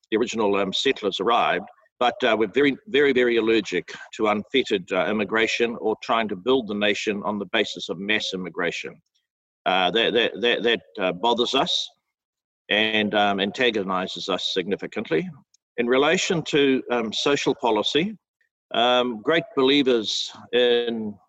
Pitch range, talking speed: 110-130 Hz, 145 wpm